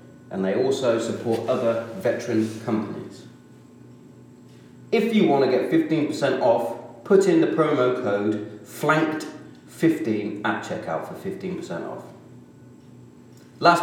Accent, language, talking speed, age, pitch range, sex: British, English, 115 wpm, 30-49, 110-140 Hz, male